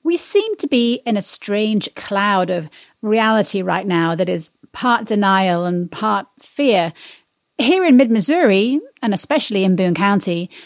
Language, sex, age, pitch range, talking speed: English, female, 40-59, 185-250 Hz, 150 wpm